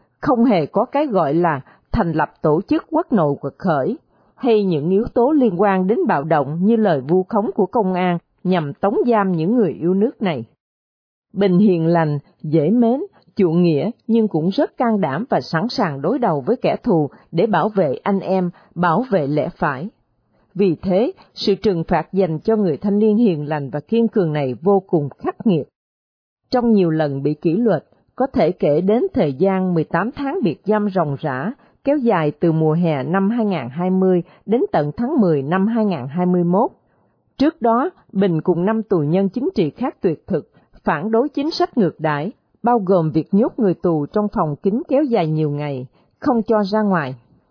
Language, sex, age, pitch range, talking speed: Vietnamese, female, 40-59, 160-220 Hz, 195 wpm